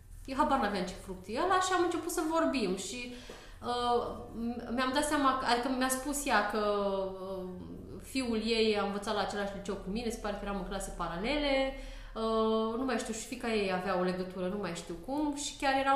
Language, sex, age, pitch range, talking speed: Romanian, female, 20-39, 195-245 Hz, 210 wpm